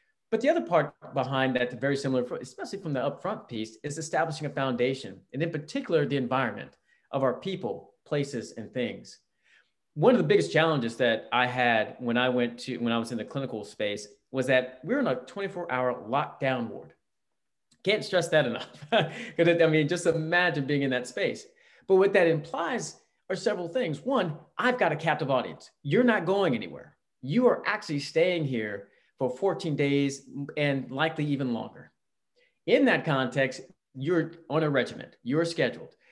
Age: 30-49